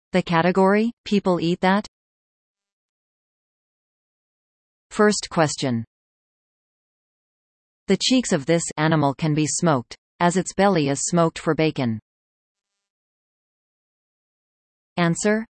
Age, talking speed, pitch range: 40-59, 90 wpm, 145-195 Hz